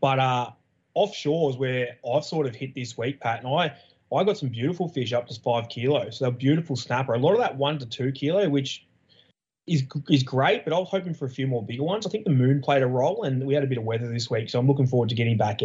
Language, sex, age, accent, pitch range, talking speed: English, male, 20-39, Australian, 120-140 Hz, 275 wpm